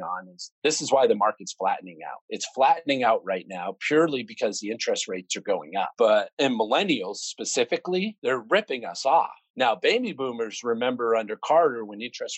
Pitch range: 110-150 Hz